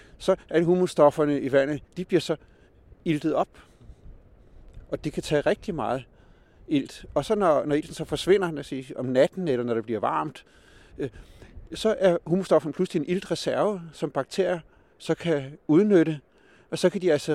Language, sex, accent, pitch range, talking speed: Danish, male, native, 130-165 Hz, 170 wpm